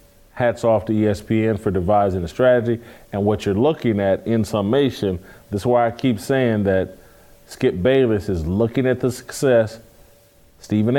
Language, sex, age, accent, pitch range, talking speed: English, male, 40-59, American, 105-130 Hz, 165 wpm